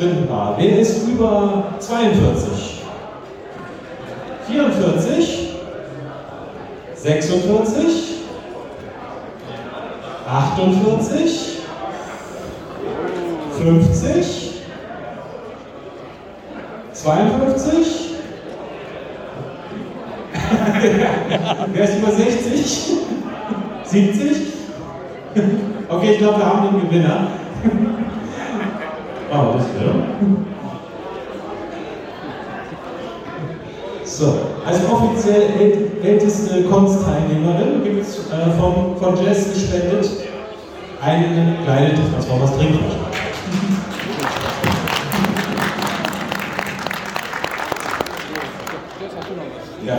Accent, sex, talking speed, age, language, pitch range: German, male, 50 wpm, 40-59, German, 175-220 Hz